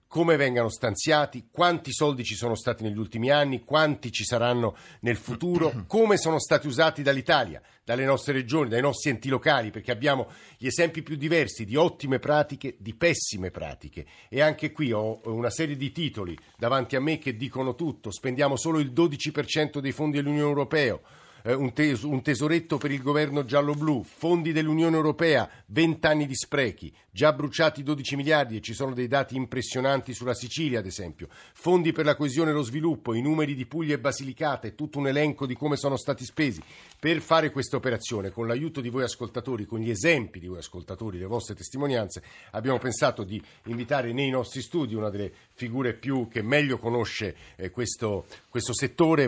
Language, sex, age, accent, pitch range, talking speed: Italian, male, 50-69, native, 115-150 Hz, 175 wpm